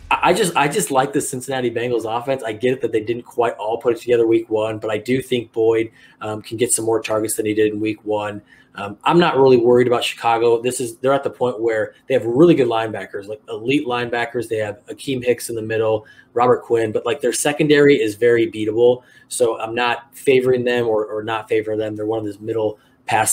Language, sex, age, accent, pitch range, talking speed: English, male, 20-39, American, 110-125 Hz, 240 wpm